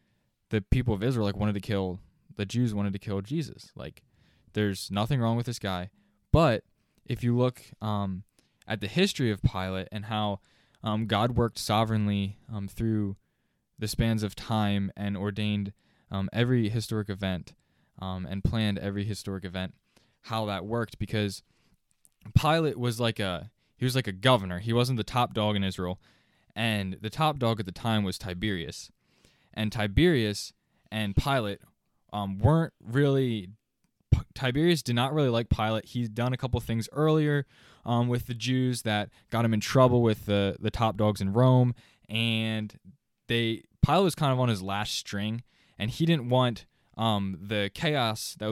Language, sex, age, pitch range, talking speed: English, male, 10-29, 100-120 Hz, 170 wpm